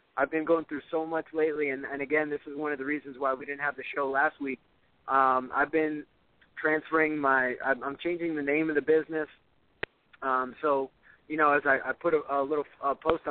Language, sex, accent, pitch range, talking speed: English, male, American, 135-150 Hz, 225 wpm